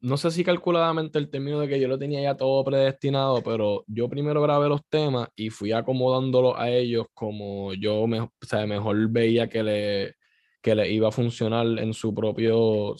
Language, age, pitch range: Spanish, 10-29, 105-125 Hz